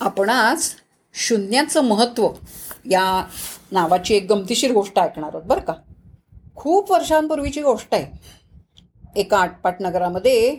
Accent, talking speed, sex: native, 115 wpm, female